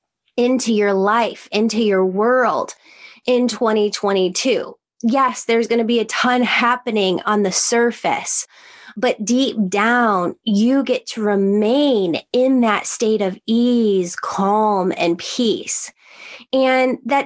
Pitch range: 205-250 Hz